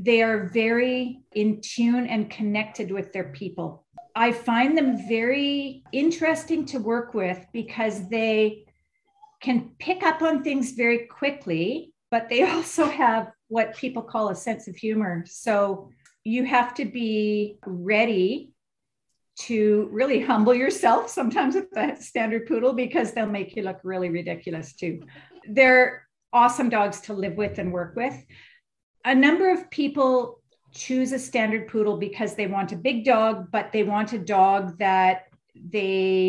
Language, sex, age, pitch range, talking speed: English, female, 50-69, 200-250 Hz, 150 wpm